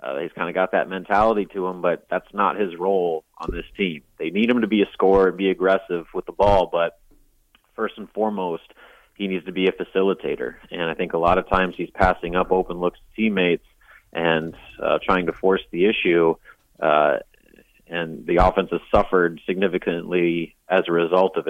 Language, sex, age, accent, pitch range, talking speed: English, male, 30-49, American, 90-105 Hz, 200 wpm